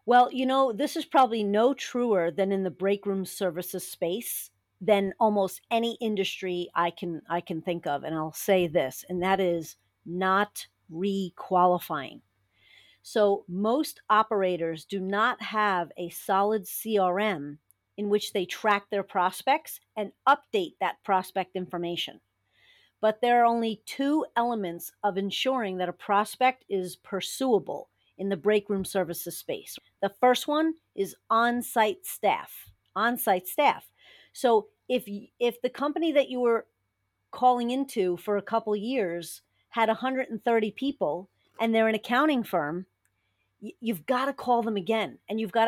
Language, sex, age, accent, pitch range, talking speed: English, female, 40-59, American, 180-235 Hz, 150 wpm